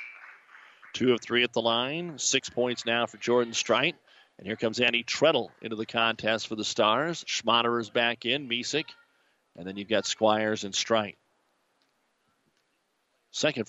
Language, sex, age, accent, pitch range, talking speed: English, male, 40-59, American, 110-135 Hz, 155 wpm